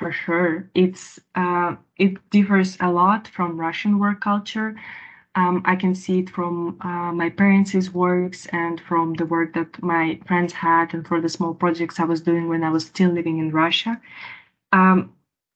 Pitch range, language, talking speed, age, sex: 170-190 Hz, Finnish, 175 wpm, 20-39, female